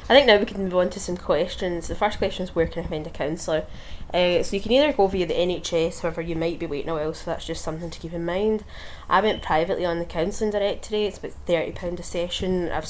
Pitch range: 165-190 Hz